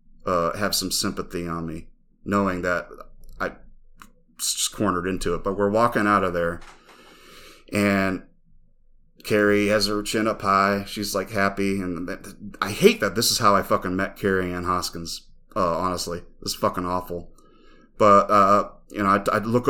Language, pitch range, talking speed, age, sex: English, 95-105 Hz, 165 wpm, 30-49, male